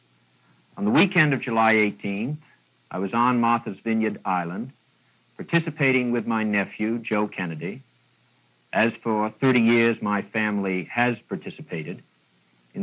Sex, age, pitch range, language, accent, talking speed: male, 50-69, 85-120 Hz, English, American, 125 wpm